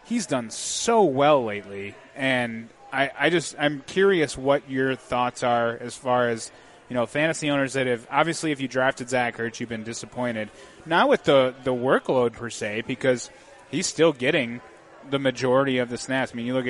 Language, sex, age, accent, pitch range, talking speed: English, male, 30-49, American, 120-140 Hz, 190 wpm